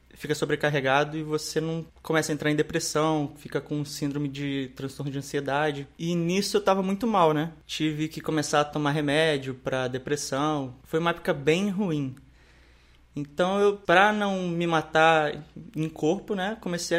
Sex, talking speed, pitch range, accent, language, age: male, 165 wpm, 140-175 Hz, Brazilian, Portuguese, 20-39